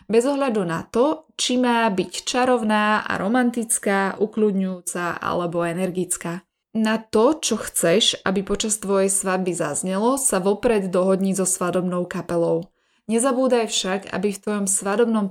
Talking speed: 135 wpm